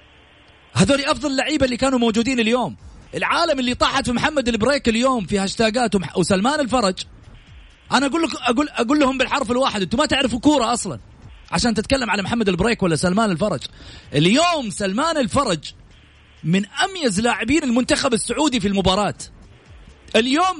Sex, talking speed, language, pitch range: male, 145 wpm, Arabic, 155-255 Hz